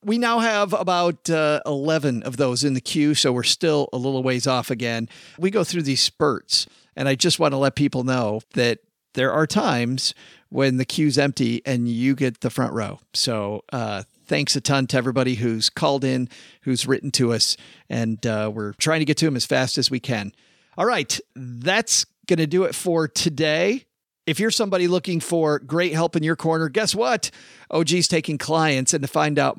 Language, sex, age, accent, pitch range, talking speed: English, male, 40-59, American, 125-170 Hz, 205 wpm